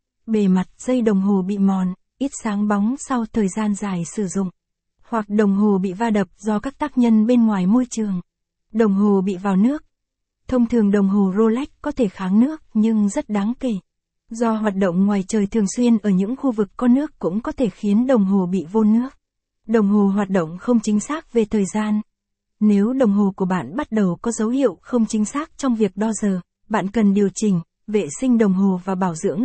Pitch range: 200-240 Hz